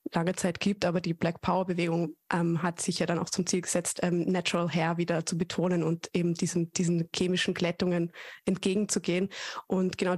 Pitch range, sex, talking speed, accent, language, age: 185-200 Hz, female, 190 wpm, German, German, 20-39